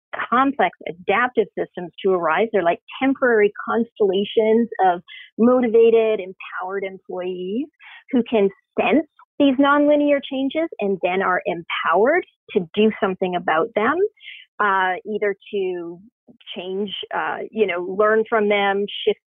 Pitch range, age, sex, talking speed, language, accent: 190-235 Hz, 40-59, female, 120 wpm, English, American